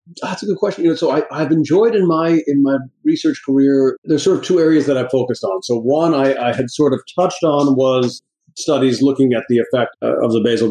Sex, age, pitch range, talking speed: male, 50-69, 110-135 Hz, 240 wpm